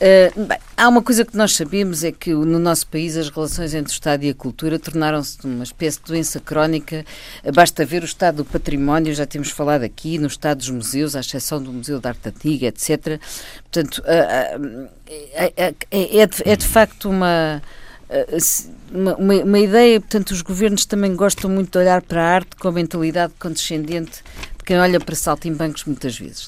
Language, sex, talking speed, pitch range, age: Portuguese, female, 170 wpm, 155-205 Hz, 50-69